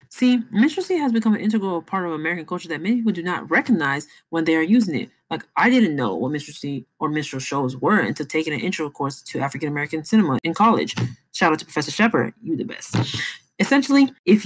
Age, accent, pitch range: 20-39, American, 155-220 Hz